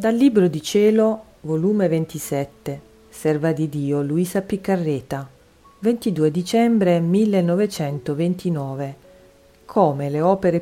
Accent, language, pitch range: native, Italian, 150-210 Hz